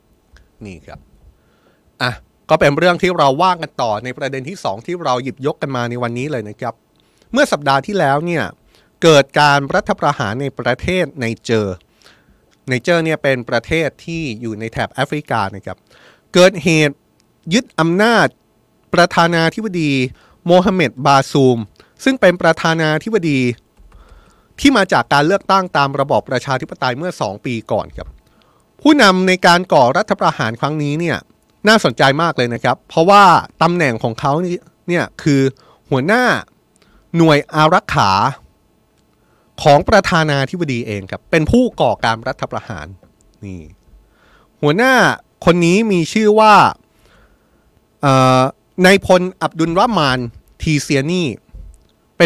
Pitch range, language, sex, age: 125-175 Hz, Thai, male, 20-39